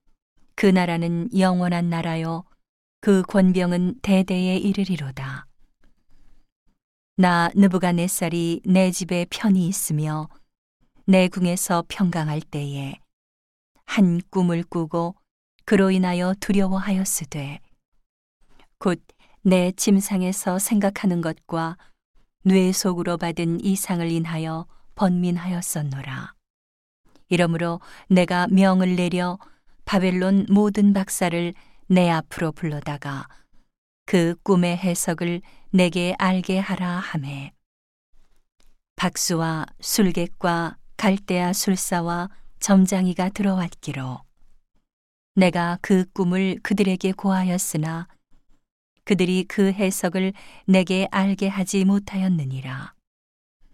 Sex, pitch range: female, 165-190 Hz